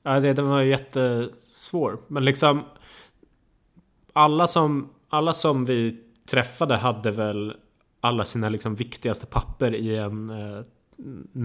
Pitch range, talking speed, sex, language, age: 115-140 Hz, 120 wpm, male, Swedish, 20-39